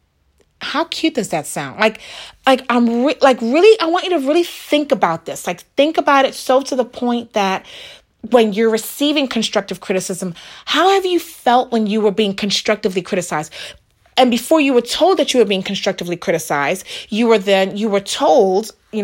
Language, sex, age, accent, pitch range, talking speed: English, female, 30-49, American, 185-265 Hz, 190 wpm